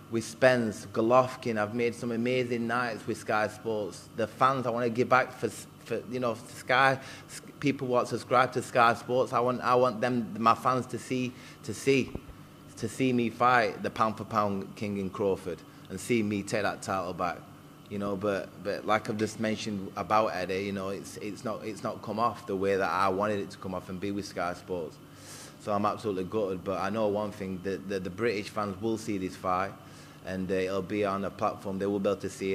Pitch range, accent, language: 100-120 Hz, British, English